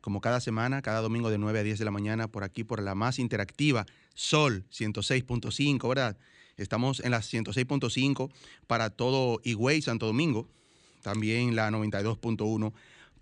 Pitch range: 115-135 Hz